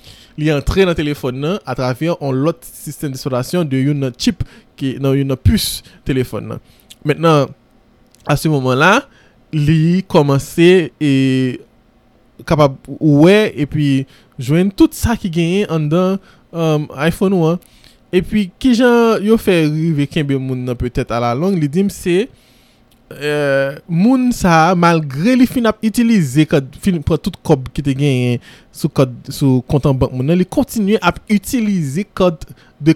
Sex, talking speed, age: male, 140 wpm, 20-39